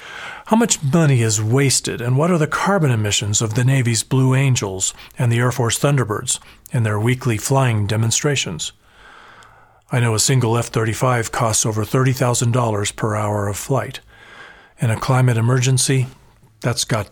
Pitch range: 115-135 Hz